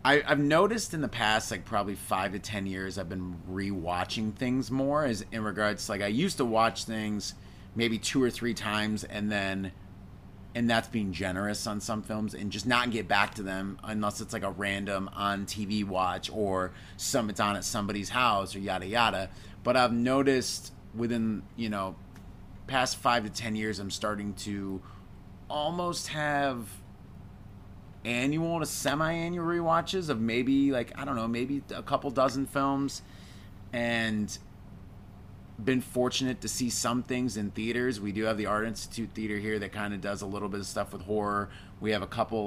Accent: American